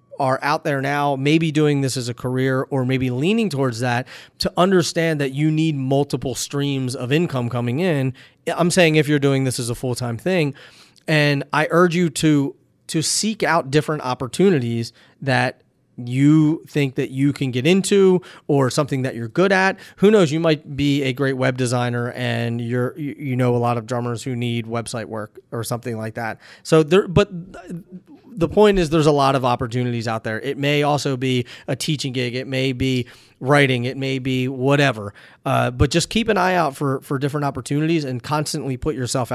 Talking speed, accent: 195 wpm, American